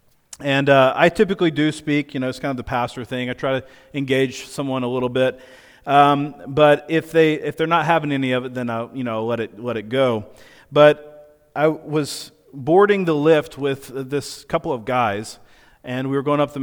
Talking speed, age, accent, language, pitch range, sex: 215 wpm, 40-59, American, English, 130-155 Hz, male